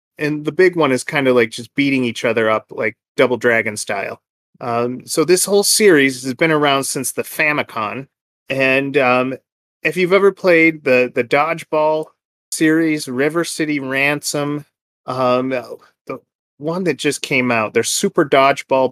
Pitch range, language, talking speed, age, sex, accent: 125-165 Hz, English, 165 wpm, 30-49, male, American